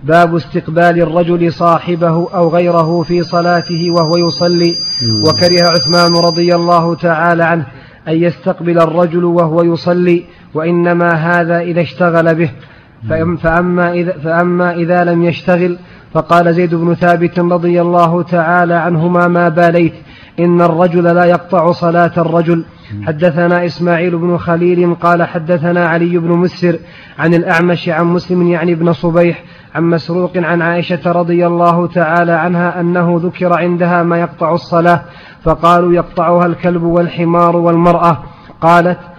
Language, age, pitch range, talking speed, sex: Arabic, 30-49, 170-175 Hz, 130 wpm, male